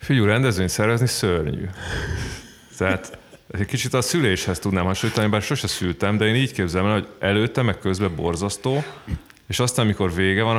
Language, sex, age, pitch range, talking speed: Hungarian, male, 30-49, 90-110 Hz, 160 wpm